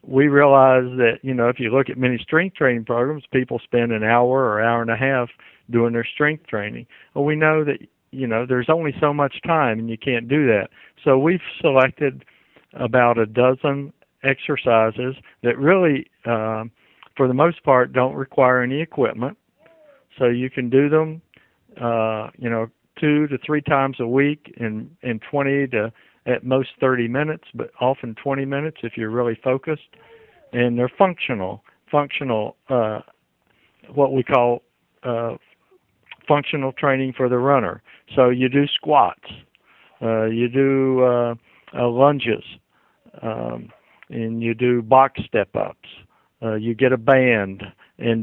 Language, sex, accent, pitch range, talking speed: English, male, American, 115-140 Hz, 160 wpm